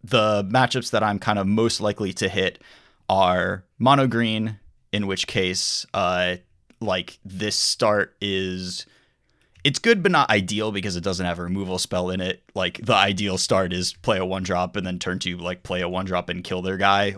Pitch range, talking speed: 90-105 Hz, 200 wpm